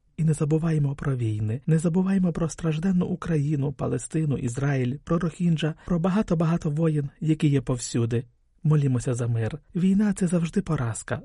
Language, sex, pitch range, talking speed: Ukrainian, male, 125-175 Hz, 150 wpm